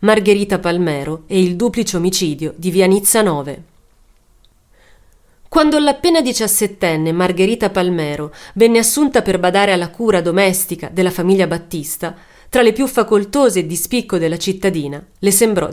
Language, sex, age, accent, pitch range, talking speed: Italian, female, 30-49, native, 175-240 Hz, 135 wpm